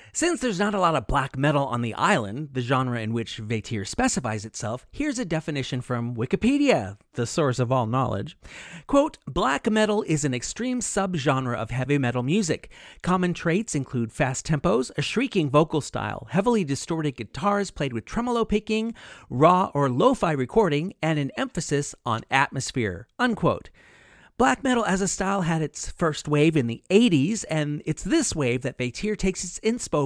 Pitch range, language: 125-190 Hz, English